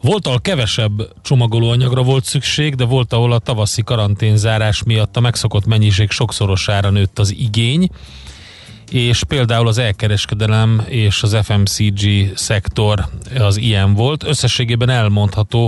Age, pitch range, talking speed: 30-49, 100-120 Hz, 125 wpm